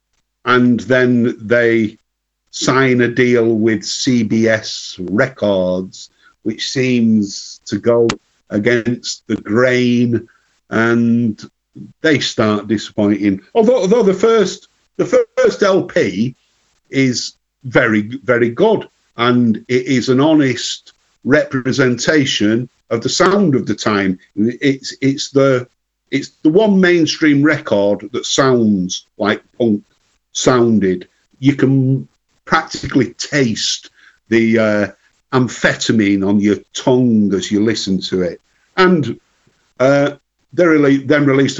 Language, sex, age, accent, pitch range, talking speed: English, male, 50-69, British, 110-135 Hz, 110 wpm